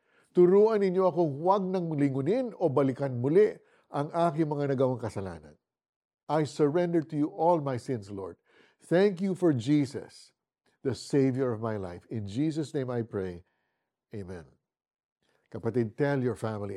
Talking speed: 145 wpm